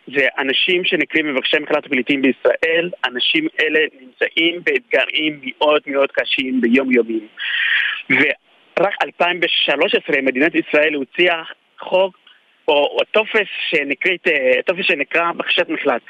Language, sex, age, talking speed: Hebrew, male, 30-49, 100 wpm